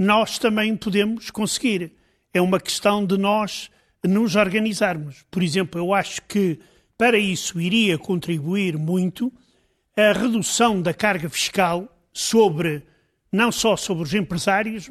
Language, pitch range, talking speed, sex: Portuguese, 170-205 Hz, 130 wpm, male